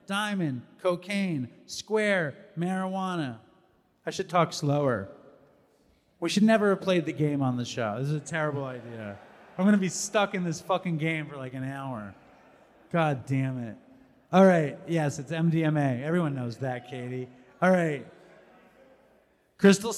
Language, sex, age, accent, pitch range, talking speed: English, male, 30-49, American, 145-200 Hz, 155 wpm